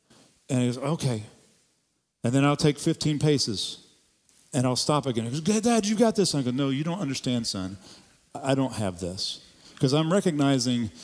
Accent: American